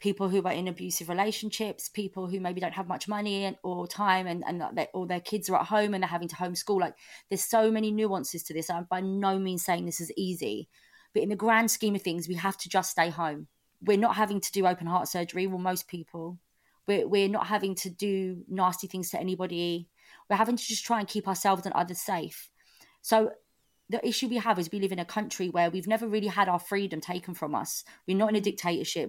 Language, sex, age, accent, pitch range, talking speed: English, female, 20-39, British, 175-210 Hz, 235 wpm